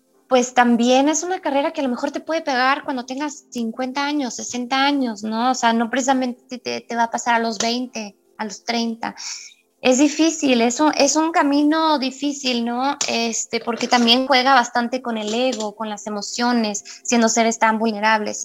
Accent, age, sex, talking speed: Mexican, 20-39, female, 190 wpm